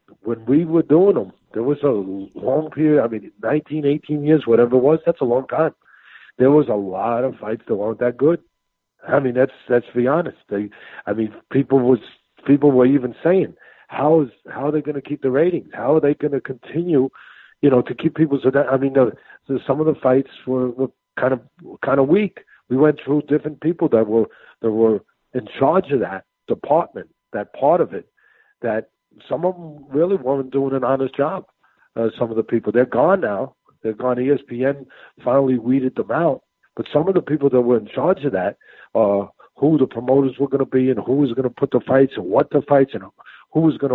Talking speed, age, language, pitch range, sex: 225 wpm, 60-79, English, 125-150 Hz, male